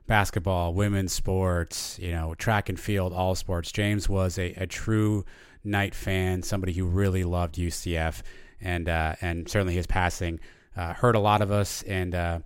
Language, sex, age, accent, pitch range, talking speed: English, male, 30-49, American, 90-105 Hz, 170 wpm